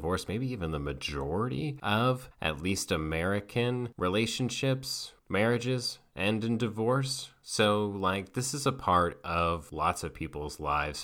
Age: 30-49